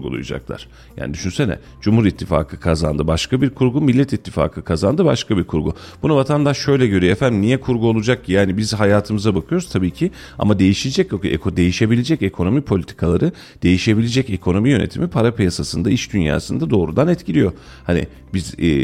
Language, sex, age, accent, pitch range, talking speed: Turkish, male, 40-59, native, 90-120 Hz, 145 wpm